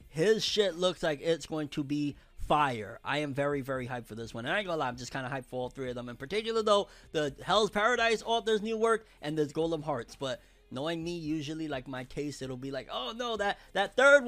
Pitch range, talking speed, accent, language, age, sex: 130-165 Hz, 250 wpm, American, English, 30-49, male